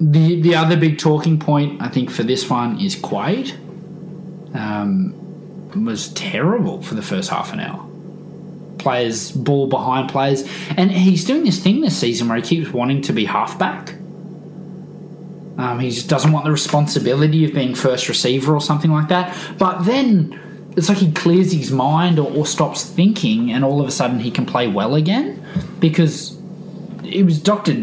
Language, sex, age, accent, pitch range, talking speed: English, male, 20-39, Australian, 140-185 Hz, 175 wpm